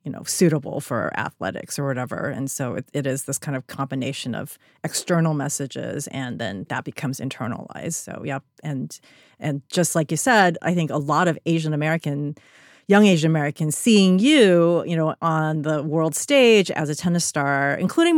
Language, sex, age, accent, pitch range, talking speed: English, female, 30-49, American, 155-235 Hz, 180 wpm